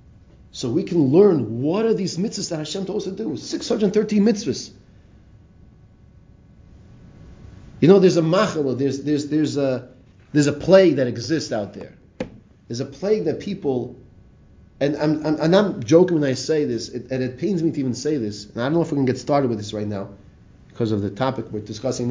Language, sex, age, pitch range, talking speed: English, male, 30-49, 115-185 Hz, 200 wpm